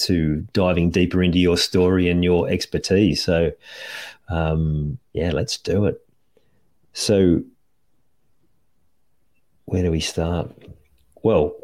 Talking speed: 110 wpm